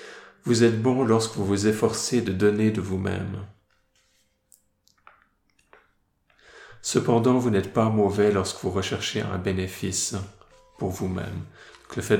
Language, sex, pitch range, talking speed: French, male, 95-110 Hz, 125 wpm